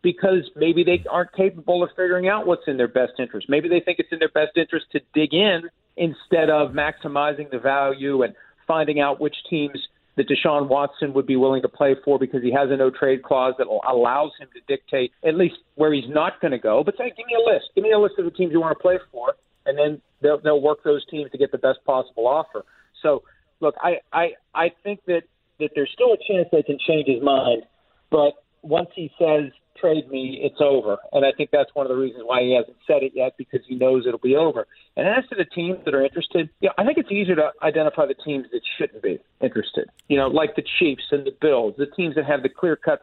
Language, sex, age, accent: English, male, 40-59, American